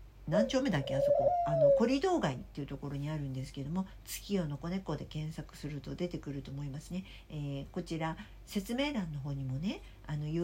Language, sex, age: Japanese, female, 60-79